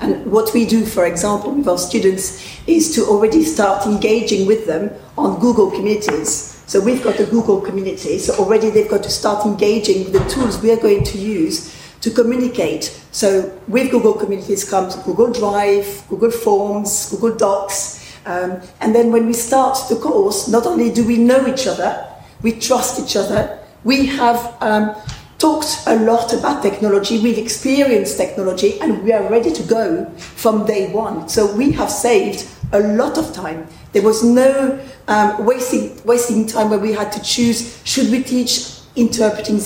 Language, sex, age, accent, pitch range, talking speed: English, female, 40-59, French, 205-240 Hz, 175 wpm